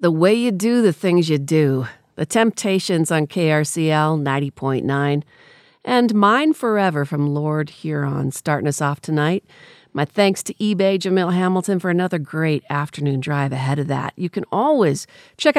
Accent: American